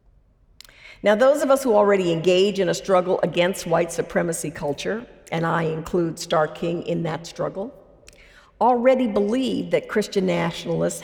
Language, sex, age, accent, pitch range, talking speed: English, female, 50-69, American, 170-215 Hz, 145 wpm